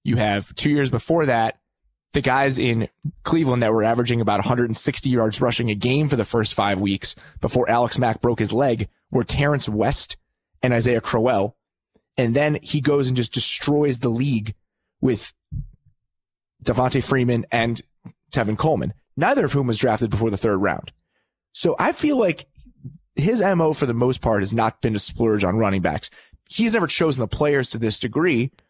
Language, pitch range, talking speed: English, 110-145 Hz, 180 wpm